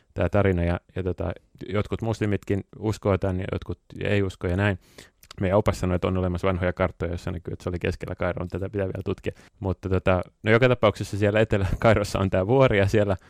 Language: Finnish